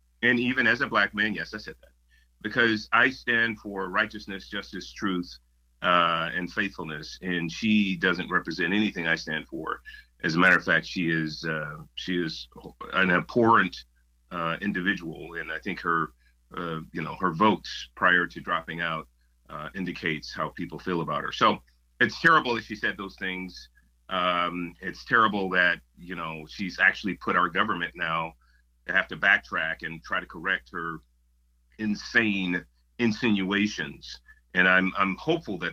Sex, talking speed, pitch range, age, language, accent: male, 165 wpm, 75-105 Hz, 40-59, English, American